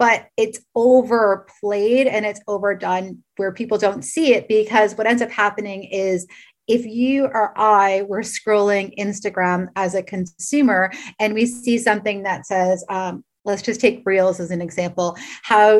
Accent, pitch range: American, 190-235 Hz